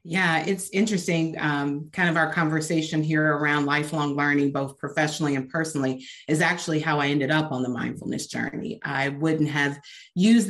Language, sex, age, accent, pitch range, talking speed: English, female, 30-49, American, 145-175 Hz, 170 wpm